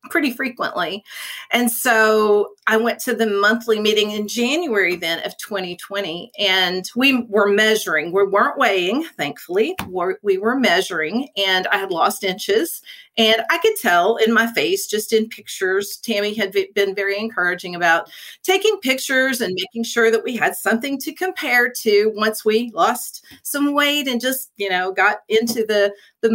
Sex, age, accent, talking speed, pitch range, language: female, 40-59, American, 165 wpm, 195-240 Hz, English